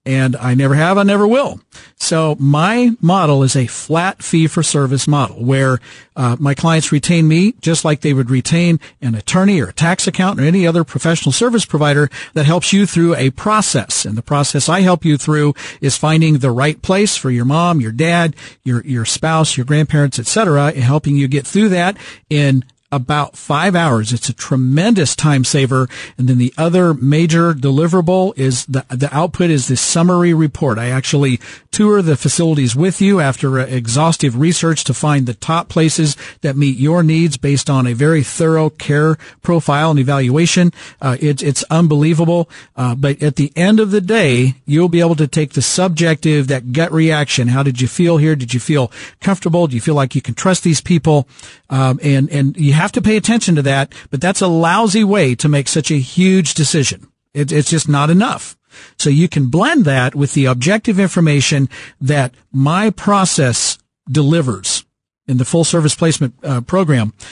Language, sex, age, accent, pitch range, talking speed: English, male, 50-69, American, 135-170 Hz, 190 wpm